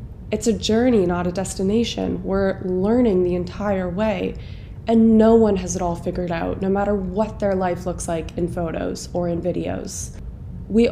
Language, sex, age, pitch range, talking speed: English, female, 20-39, 175-205 Hz, 175 wpm